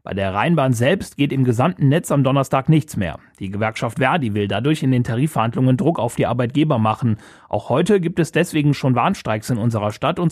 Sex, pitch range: male, 120-155 Hz